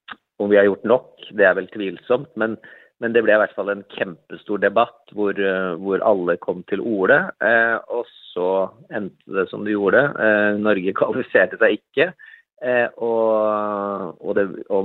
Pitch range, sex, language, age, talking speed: 100-120 Hz, male, Danish, 30-49, 180 wpm